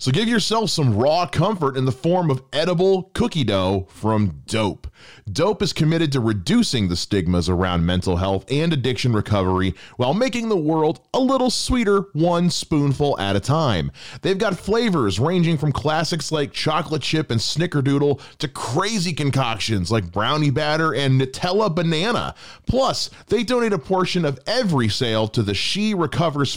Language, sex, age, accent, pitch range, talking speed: English, male, 30-49, American, 110-180 Hz, 165 wpm